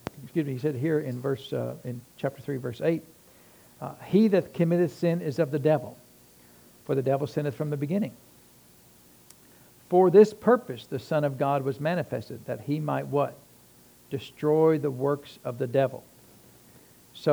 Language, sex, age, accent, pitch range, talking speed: English, male, 60-79, American, 130-155 Hz, 170 wpm